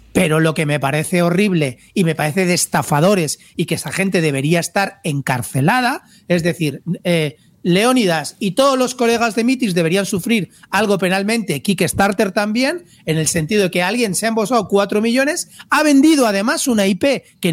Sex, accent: male, Spanish